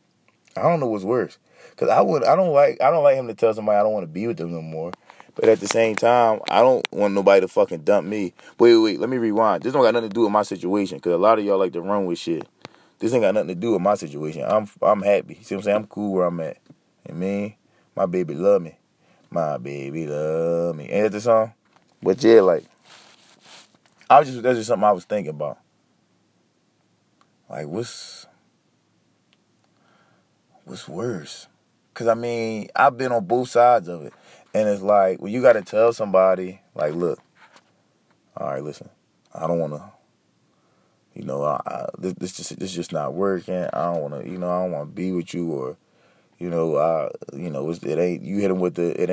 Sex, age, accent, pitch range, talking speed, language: male, 20-39, American, 85-110 Hz, 220 wpm, English